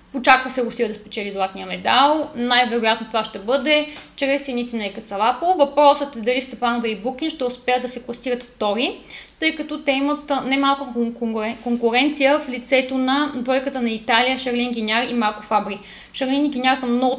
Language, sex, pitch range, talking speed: Bulgarian, female, 230-275 Hz, 170 wpm